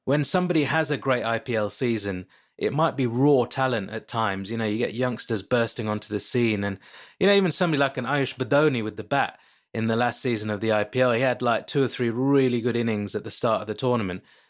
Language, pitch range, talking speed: English, 110-135 Hz, 235 wpm